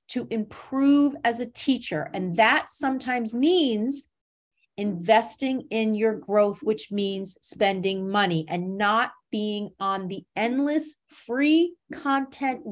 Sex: female